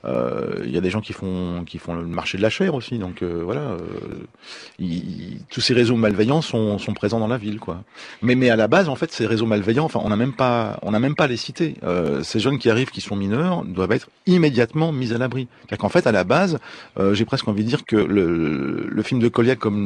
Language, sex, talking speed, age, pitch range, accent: French, male, 265 wpm, 40-59, 110-140 Hz, French